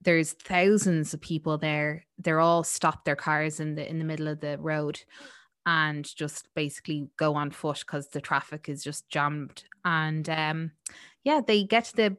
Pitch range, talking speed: 155-180 Hz, 180 wpm